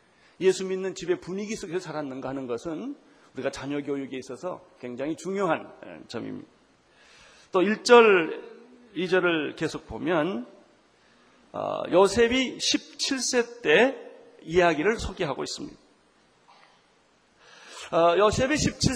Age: 40-59